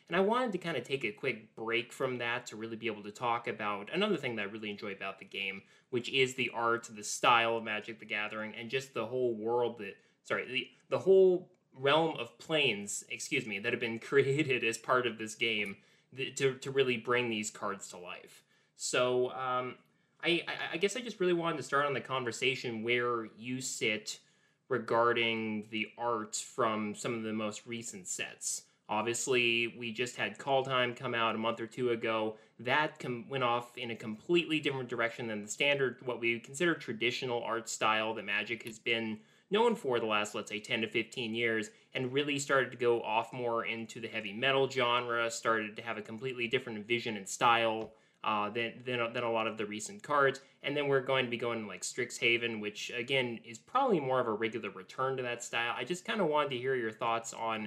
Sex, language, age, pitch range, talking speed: male, English, 20-39, 115-130 Hz, 215 wpm